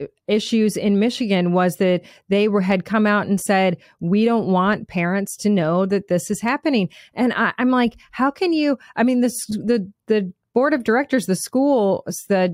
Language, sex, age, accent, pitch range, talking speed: English, female, 30-49, American, 185-220 Hz, 185 wpm